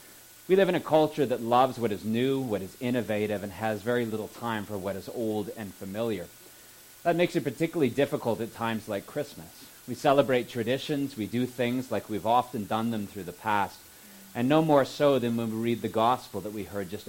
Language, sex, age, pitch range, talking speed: English, male, 30-49, 105-130 Hz, 215 wpm